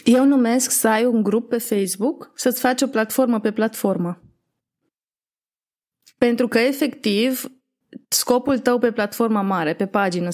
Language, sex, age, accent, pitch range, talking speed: Romanian, female, 20-39, native, 200-255 Hz, 140 wpm